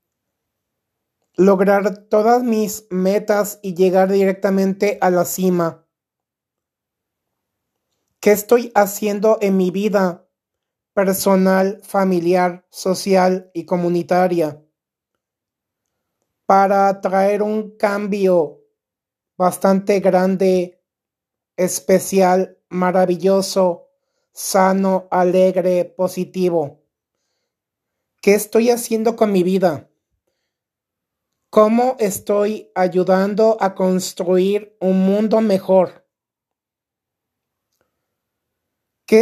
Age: 30-49